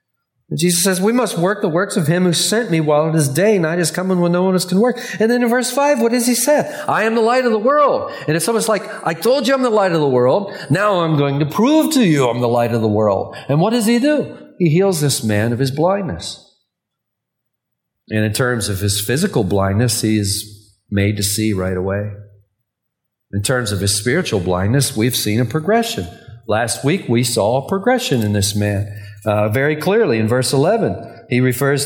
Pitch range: 115-180 Hz